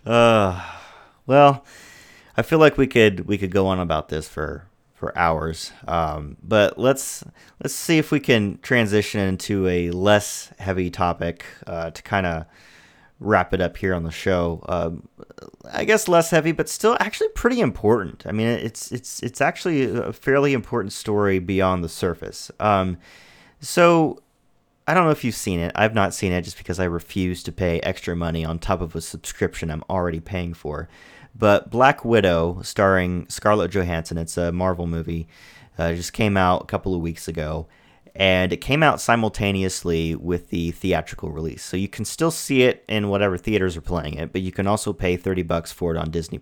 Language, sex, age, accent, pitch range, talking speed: English, male, 30-49, American, 85-120 Hz, 185 wpm